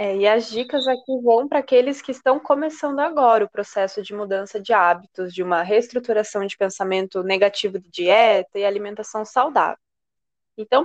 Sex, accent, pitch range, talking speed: female, Brazilian, 210-265 Hz, 160 wpm